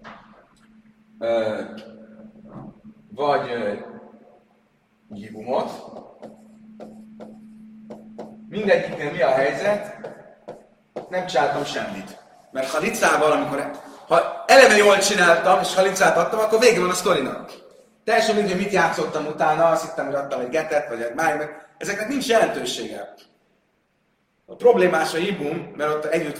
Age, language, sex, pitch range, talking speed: 30-49, Hungarian, male, 150-210 Hz, 120 wpm